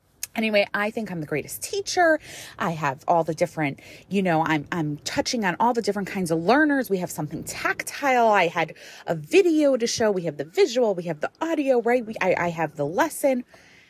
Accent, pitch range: American, 180-265 Hz